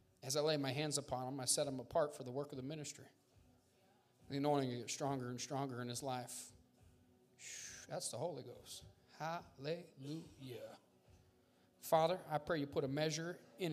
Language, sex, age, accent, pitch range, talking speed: English, male, 40-59, American, 125-155 Hz, 170 wpm